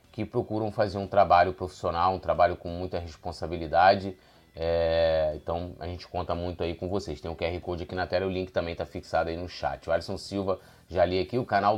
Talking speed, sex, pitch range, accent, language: 215 wpm, male, 85-100 Hz, Brazilian, Portuguese